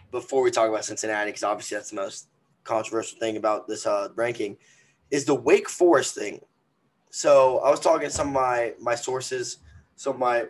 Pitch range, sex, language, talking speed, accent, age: 130-205 Hz, male, English, 195 wpm, American, 20-39